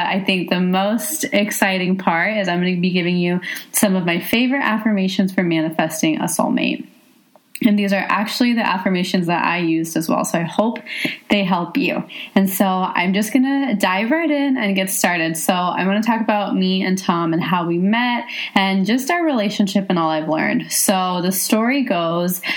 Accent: American